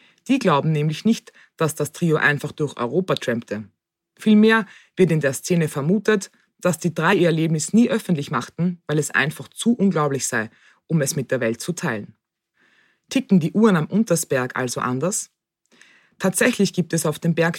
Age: 20-39